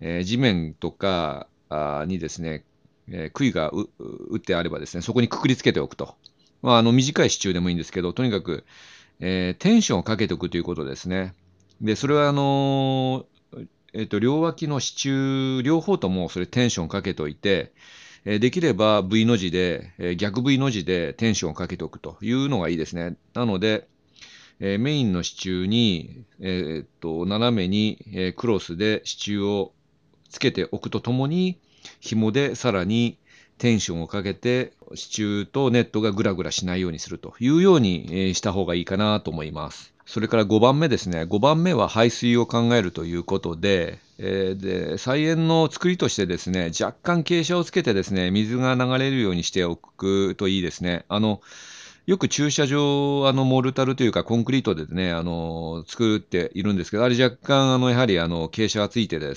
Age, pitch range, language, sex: 40-59, 90-130 Hz, Japanese, male